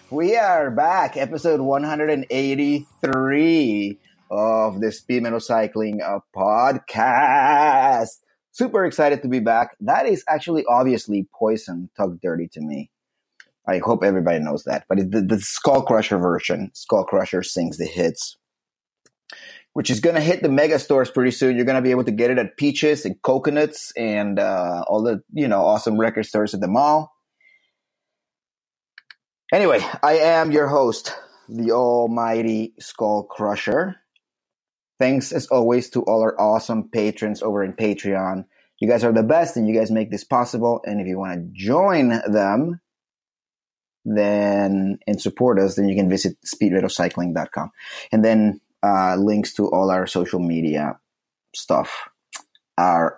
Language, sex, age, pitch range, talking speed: English, male, 30-49, 105-140 Hz, 155 wpm